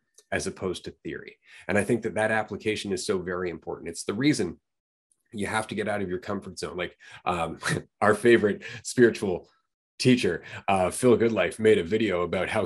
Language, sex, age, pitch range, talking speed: English, male, 30-49, 105-125 Hz, 190 wpm